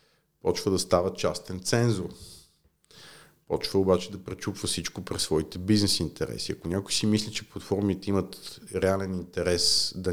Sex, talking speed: male, 140 wpm